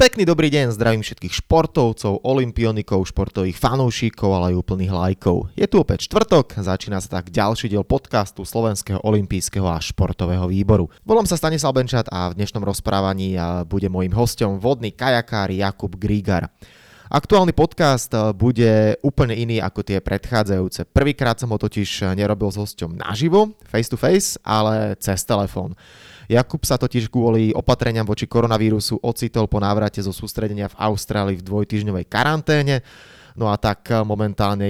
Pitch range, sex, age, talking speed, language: 100-120 Hz, male, 20-39, 150 wpm, Slovak